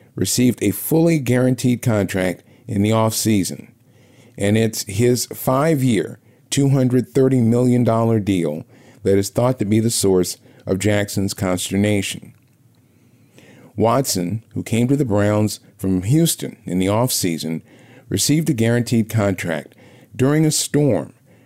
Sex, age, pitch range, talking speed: male, 50-69, 100-130 Hz, 120 wpm